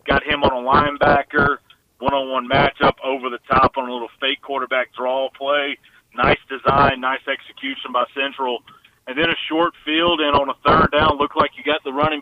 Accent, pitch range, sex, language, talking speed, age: American, 130-155 Hz, male, English, 190 wpm, 40-59